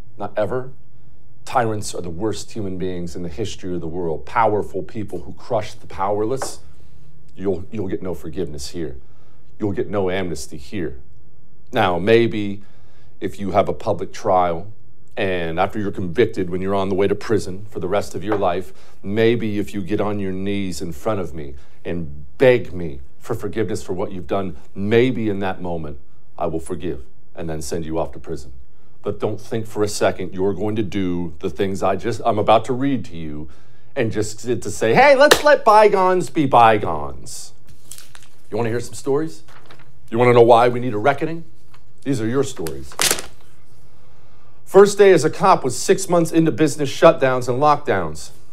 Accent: American